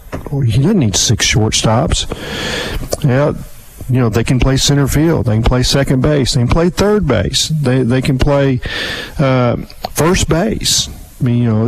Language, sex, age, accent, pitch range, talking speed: English, male, 50-69, American, 115-150 Hz, 180 wpm